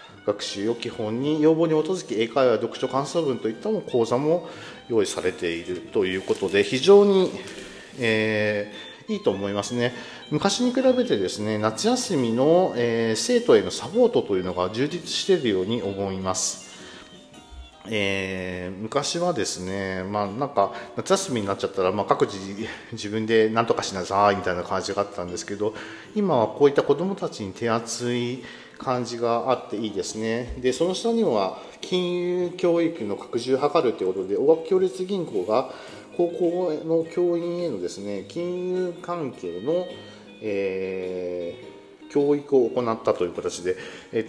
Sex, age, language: male, 40-59, Japanese